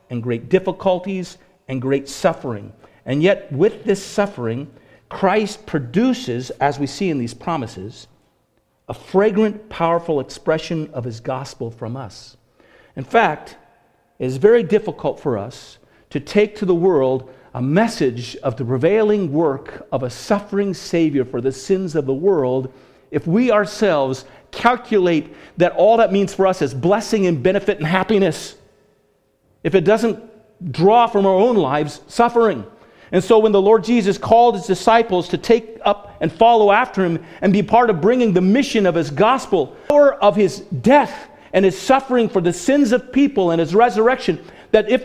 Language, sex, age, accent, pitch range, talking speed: English, male, 50-69, American, 140-220 Hz, 165 wpm